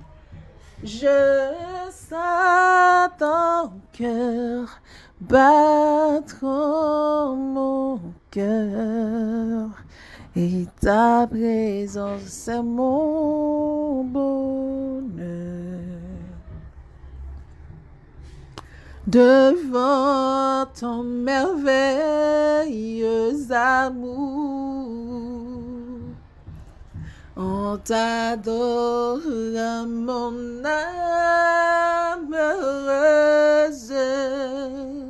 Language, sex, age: English, female, 30-49